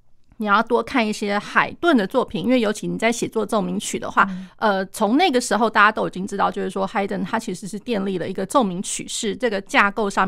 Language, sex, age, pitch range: Chinese, female, 30-49, 200-260 Hz